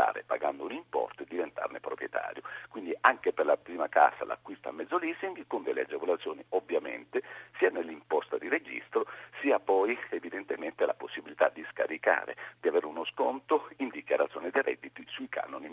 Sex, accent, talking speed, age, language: male, native, 155 wpm, 50-69, Italian